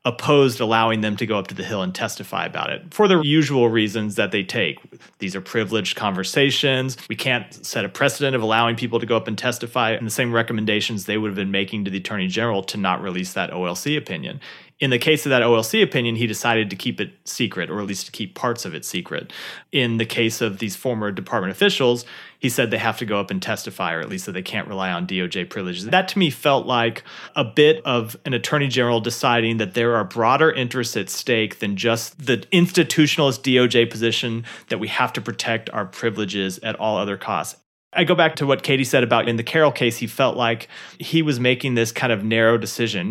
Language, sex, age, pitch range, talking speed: English, male, 30-49, 105-130 Hz, 230 wpm